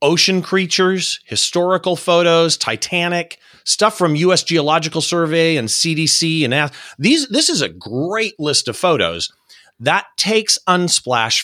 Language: English